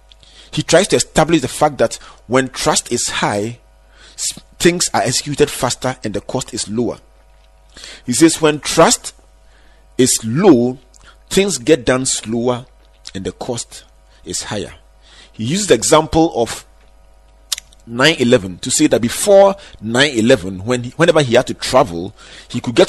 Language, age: English, 40-59